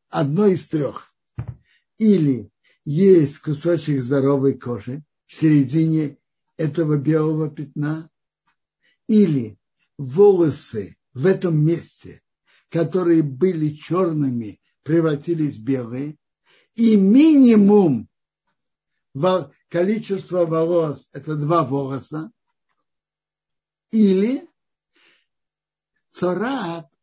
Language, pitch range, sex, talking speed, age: Russian, 145-185 Hz, male, 75 wpm, 60-79